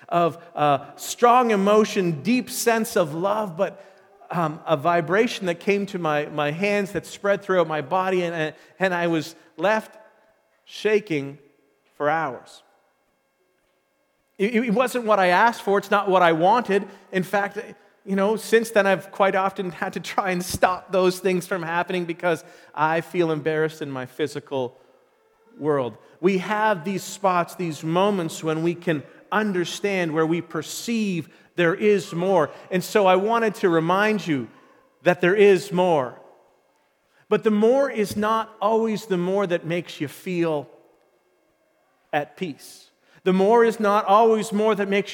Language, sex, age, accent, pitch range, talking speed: English, male, 40-59, American, 170-210 Hz, 155 wpm